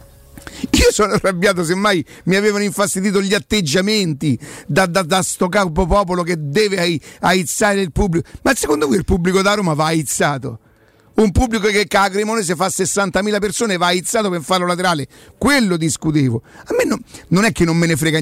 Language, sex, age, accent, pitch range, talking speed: Italian, male, 50-69, native, 170-210 Hz, 180 wpm